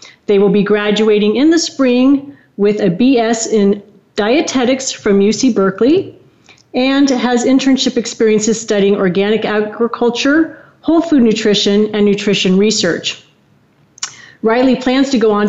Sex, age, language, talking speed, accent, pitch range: female, 40-59, English, 130 wpm, American, 200-245 Hz